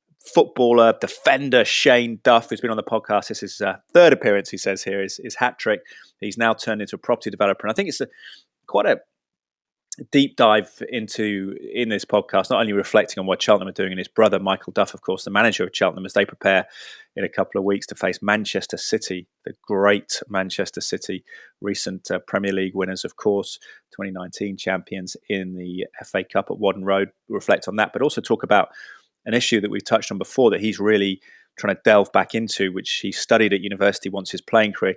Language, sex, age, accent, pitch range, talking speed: English, male, 20-39, British, 95-110 Hz, 210 wpm